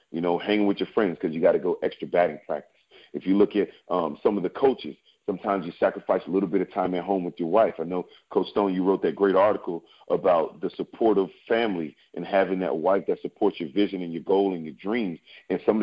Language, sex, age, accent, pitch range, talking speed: English, male, 40-59, American, 90-110 Hz, 255 wpm